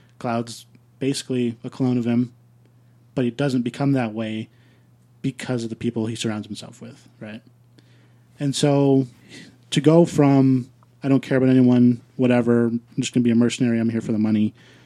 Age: 30-49